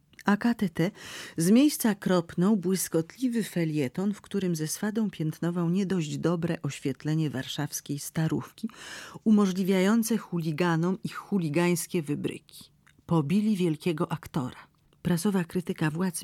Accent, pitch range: native, 155-195 Hz